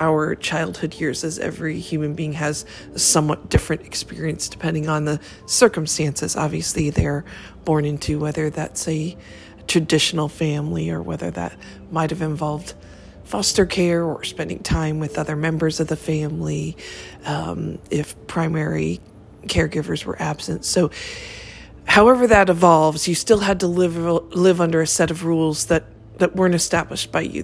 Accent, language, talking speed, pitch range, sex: American, English, 150 wpm, 145-175 Hz, female